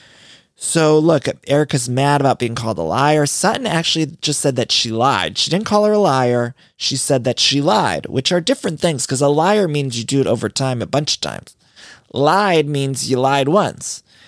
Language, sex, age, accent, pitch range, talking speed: English, male, 30-49, American, 125-170 Hz, 205 wpm